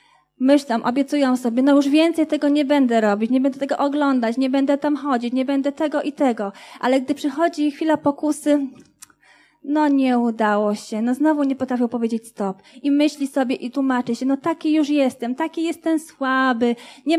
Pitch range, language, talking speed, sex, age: 235-295 Hz, Polish, 180 wpm, female, 20-39